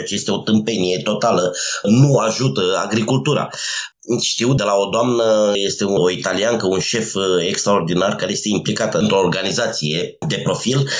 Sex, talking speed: male, 140 wpm